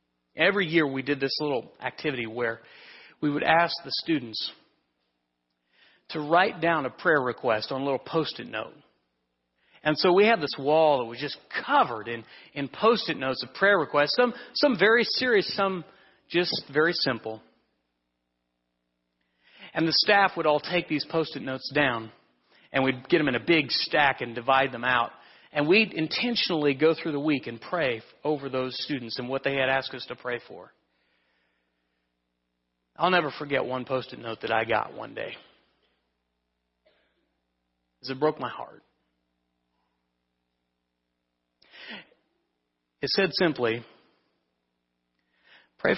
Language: English